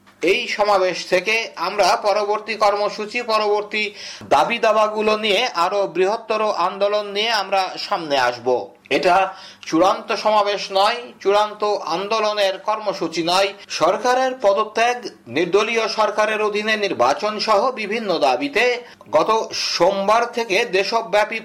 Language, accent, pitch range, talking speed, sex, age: Bengali, native, 195-220 Hz, 105 wpm, male, 50-69